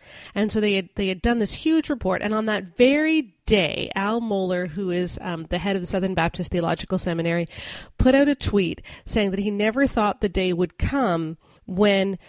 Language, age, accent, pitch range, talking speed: English, 30-49, American, 185-235 Hz, 200 wpm